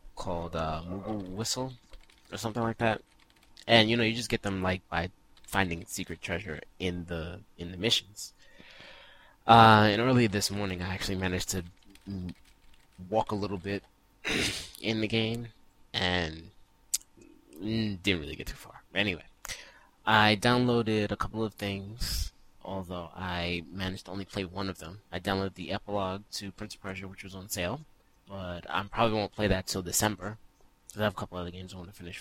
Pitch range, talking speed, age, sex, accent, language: 90-105 Hz, 175 wpm, 20-39, male, American, English